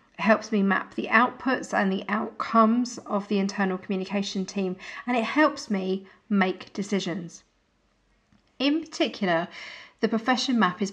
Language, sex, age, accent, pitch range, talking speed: English, female, 40-59, British, 190-240 Hz, 135 wpm